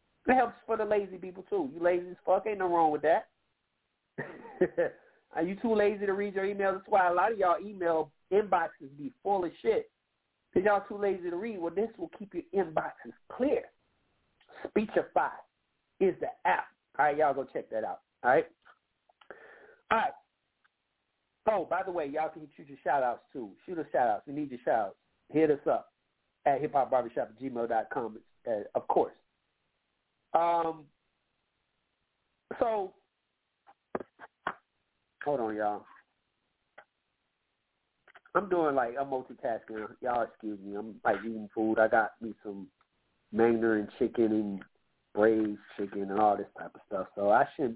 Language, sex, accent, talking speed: English, male, American, 155 wpm